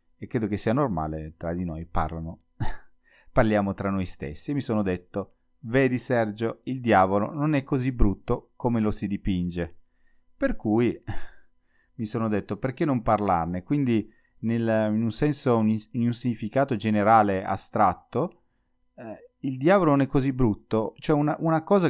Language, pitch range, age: Italian, 95-130 Hz, 30-49